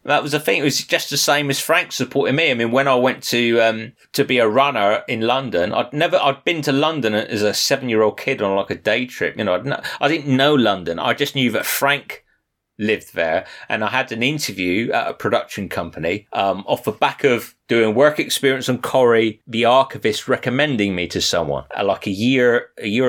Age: 30-49